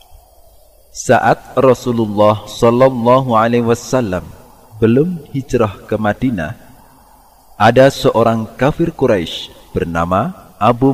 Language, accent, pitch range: Indonesian, native, 100-130 Hz